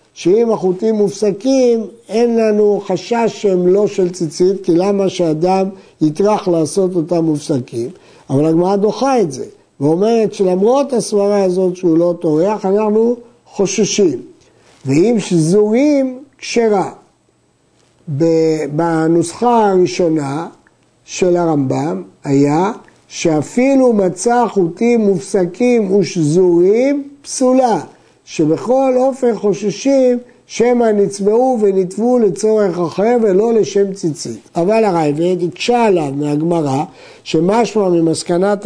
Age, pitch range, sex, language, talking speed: 50-69, 175-220 Hz, male, Hebrew, 100 wpm